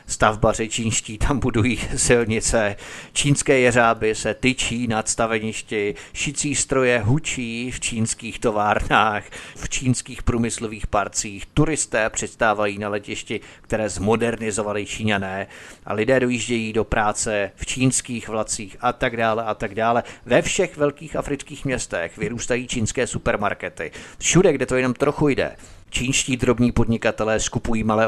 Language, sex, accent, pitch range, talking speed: Czech, male, native, 110-130 Hz, 130 wpm